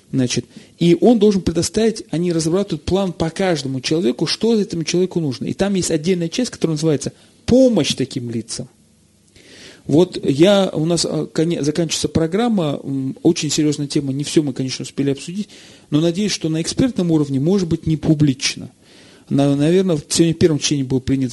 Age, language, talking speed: 40-59, Russian, 155 wpm